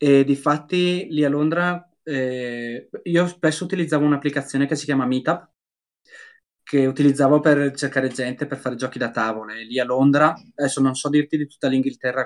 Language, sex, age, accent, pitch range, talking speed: Italian, male, 20-39, native, 120-150 Hz, 175 wpm